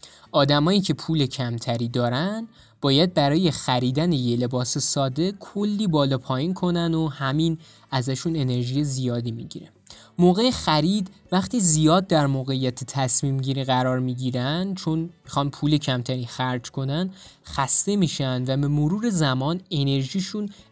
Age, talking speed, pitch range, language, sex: 20-39, 125 wpm, 135-180 Hz, Persian, male